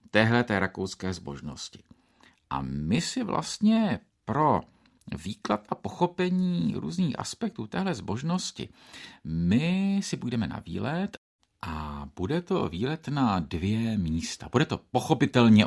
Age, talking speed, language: 50-69, 115 wpm, Czech